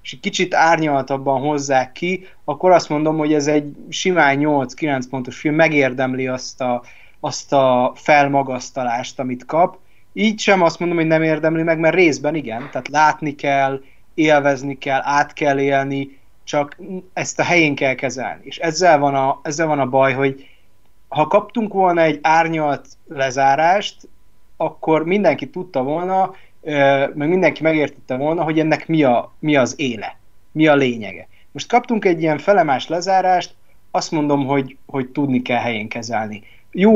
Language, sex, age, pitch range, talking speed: Hungarian, male, 30-49, 135-165 Hz, 150 wpm